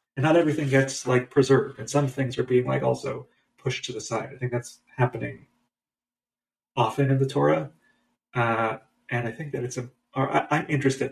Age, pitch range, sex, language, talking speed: 30-49, 120-135 Hz, male, English, 185 wpm